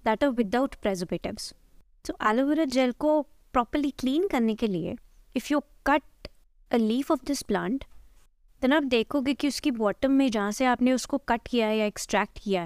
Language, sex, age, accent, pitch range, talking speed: Hindi, female, 20-39, native, 210-270 Hz, 180 wpm